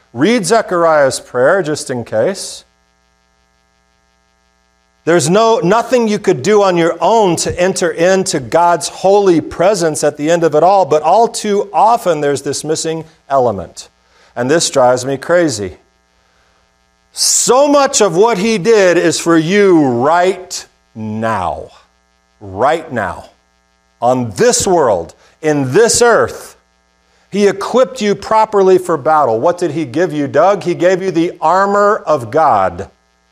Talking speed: 140 wpm